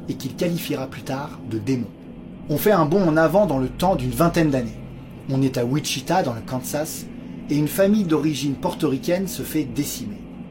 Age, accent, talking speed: 20-39, French, 195 wpm